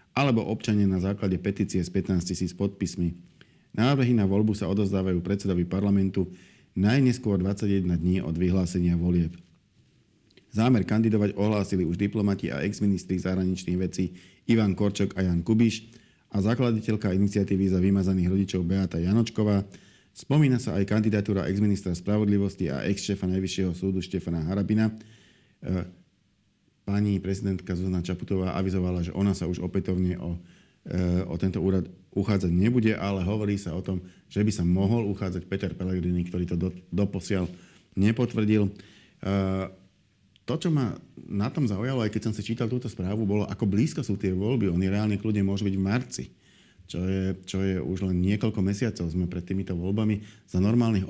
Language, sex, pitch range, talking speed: Slovak, male, 90-105 Hz, 150 wpm